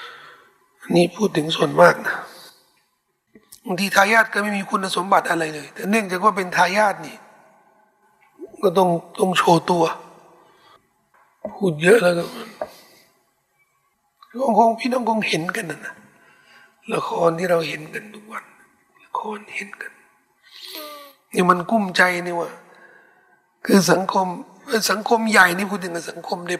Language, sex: Thai, male